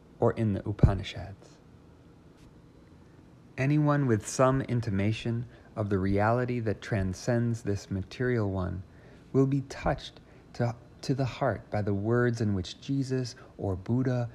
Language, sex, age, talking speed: English, male, 40-59, 130 wpm